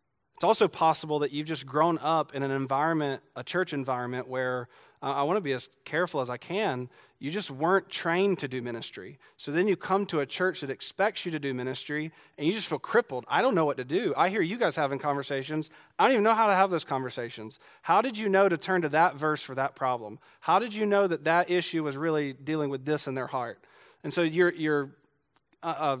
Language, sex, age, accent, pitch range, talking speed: English, male, 40-59, American, 135-165 Hz, 240 wpm